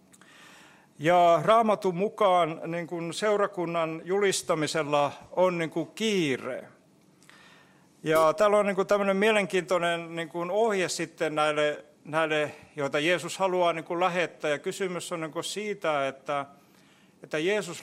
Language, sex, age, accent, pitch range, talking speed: Finnish, male, 60-79, native, 155-185 Hz, 130 wpm